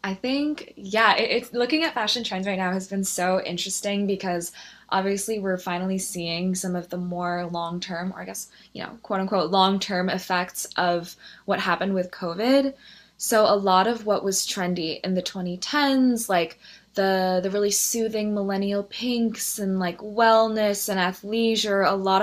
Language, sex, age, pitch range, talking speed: English, female, 20-39, 180-210 Hz, 165 wpm